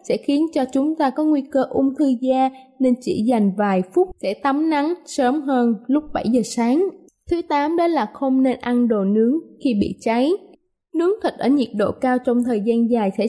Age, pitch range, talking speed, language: 20-39, 235-295 Hz, 215 wpm, Vietnamese